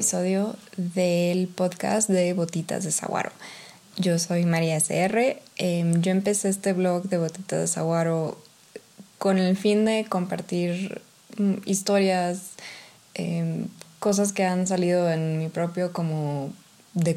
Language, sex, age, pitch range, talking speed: Spanish, female, 20-39, 170-200 Hz, 130 wpm